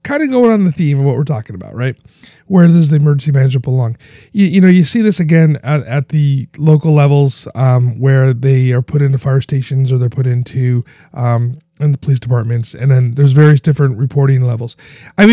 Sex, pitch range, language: male, 130-155 Hz, English